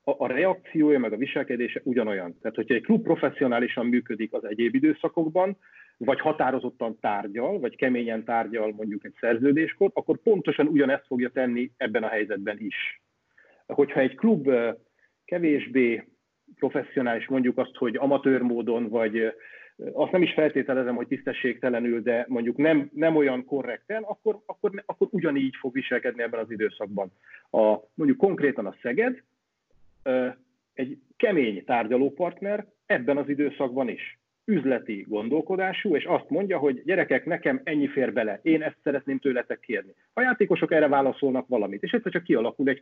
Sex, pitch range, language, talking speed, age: male, 120-155 Hz, Hungarian, 145 wpm, 40-59